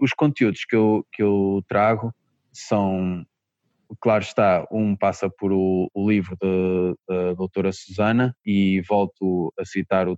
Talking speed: 135 wpm